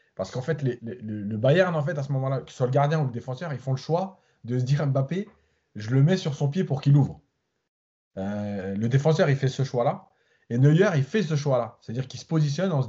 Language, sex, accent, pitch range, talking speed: French, male, French, 115-150 Hz, 260 wpm